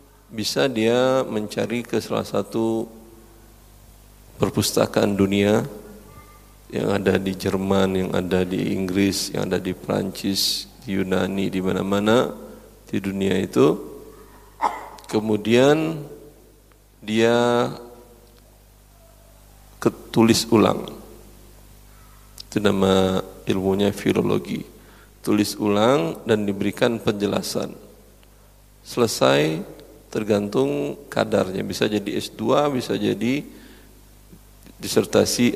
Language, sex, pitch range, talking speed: Indonesian, male, 100-115 Hz, 85 wpm